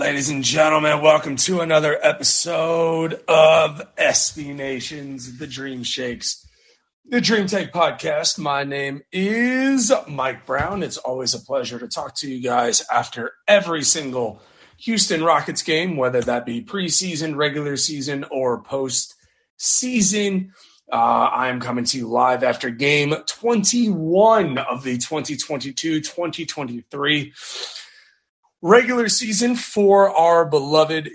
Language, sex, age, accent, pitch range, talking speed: English, male, 30-49, American, 130-170 Hz, 120 wpm